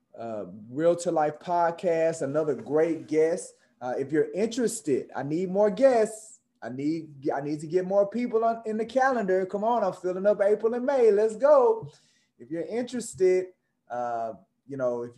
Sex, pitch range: male, 145-205 Hz